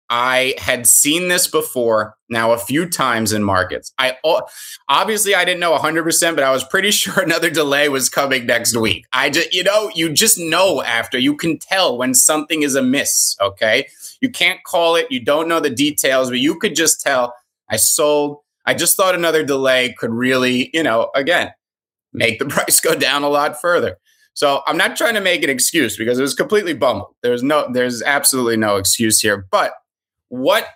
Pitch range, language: 125-175 Hz, English